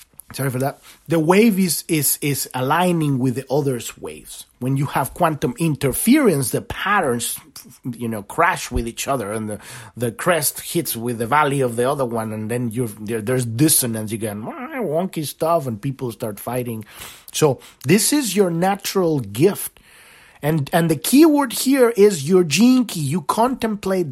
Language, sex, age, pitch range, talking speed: English, male, 30-49, 125-180 Hz, 170 wpm